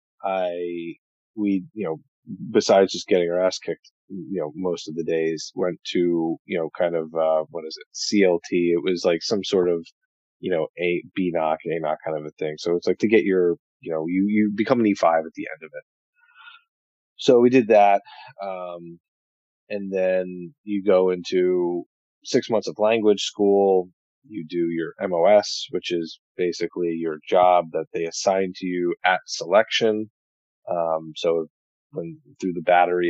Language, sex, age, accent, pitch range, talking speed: English, male, 30-49, American, 80-100 Hz, 180 wpm